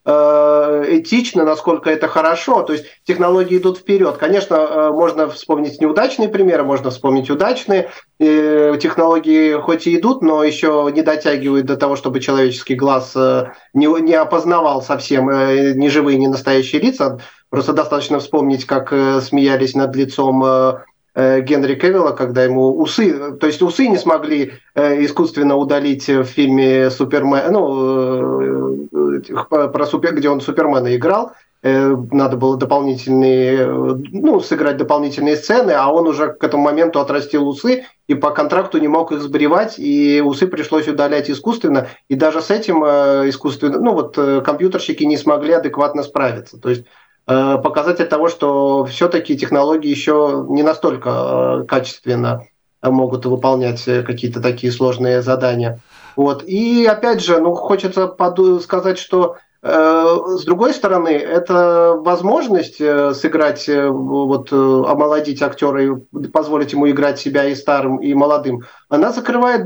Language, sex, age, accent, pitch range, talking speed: Russian, male, 30-49, native, 135-165 Hz, 135 wpm